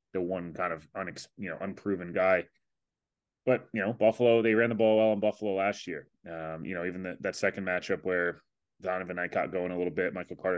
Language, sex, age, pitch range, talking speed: English, male, 20-39, 90-110 Hz, 220 wpm